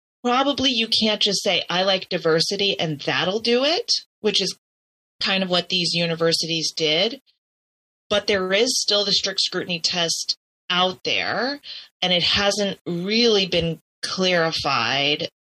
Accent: American